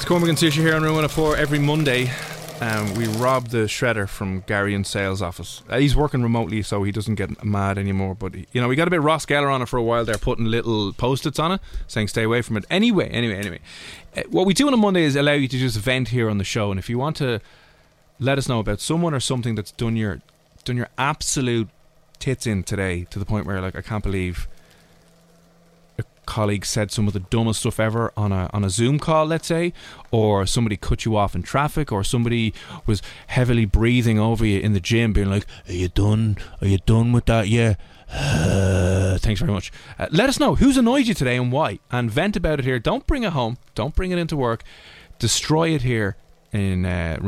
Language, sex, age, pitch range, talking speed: English, male, 20-39, 100-140 Hz, 230 wpm